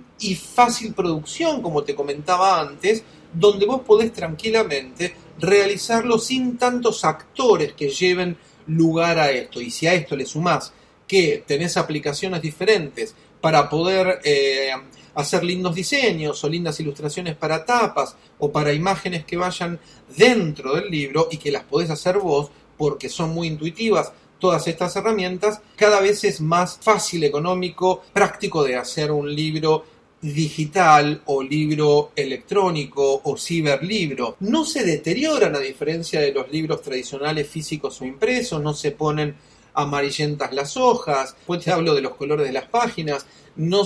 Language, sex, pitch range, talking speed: Spanish, male, 145-195 Hz, 145 wpm